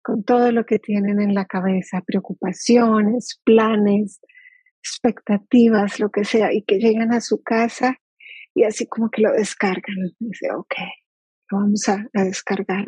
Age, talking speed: 40-59, 155 wpm